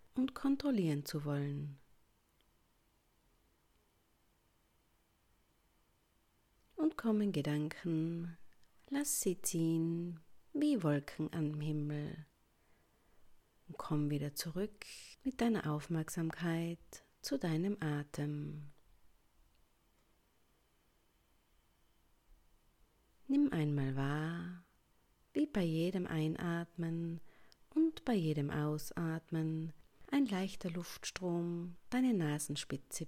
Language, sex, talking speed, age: German, female, 75 wpm, 40-59